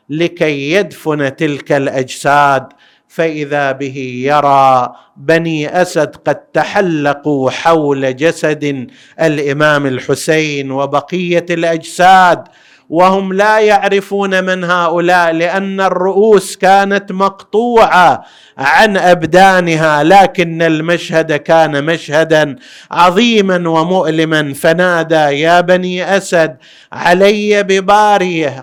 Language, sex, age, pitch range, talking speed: Arabic, male, 50-69, 165-185 Hz, 85 wpm